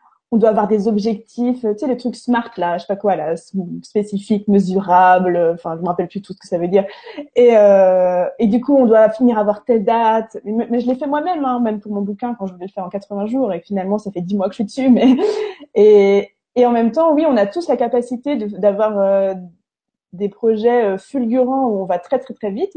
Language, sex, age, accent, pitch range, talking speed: French, female, 20-39, French, 200-255 Hz, 250 wpm